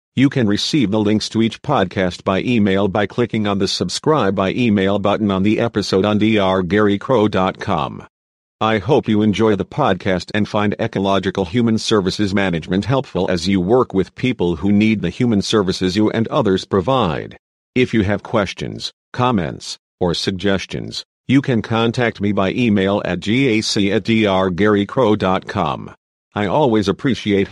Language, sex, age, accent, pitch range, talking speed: English, male, 50-69, American, 95-115 Hz, 155 wpm